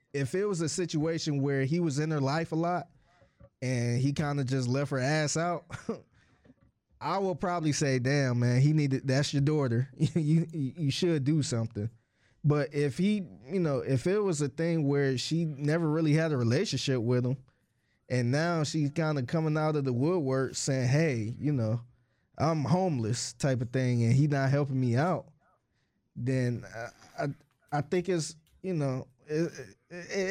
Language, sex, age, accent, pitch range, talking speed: English, male, 20-39, American, 125-160 Hz, 185 wpm